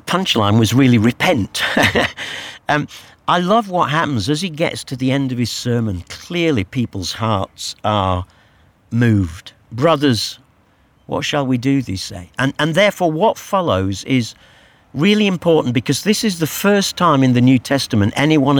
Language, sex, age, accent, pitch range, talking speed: English, male, 50-69, British, 105-150 Hz, 160 wpm